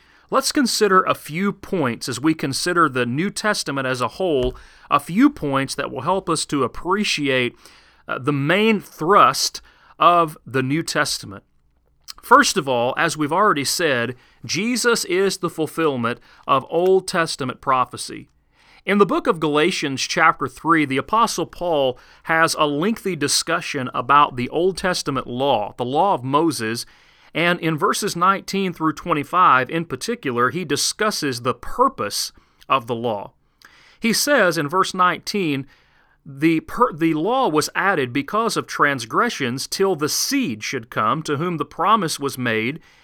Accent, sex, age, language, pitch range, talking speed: American, male, 40-59, English, 135-185 Hz, 155 wpm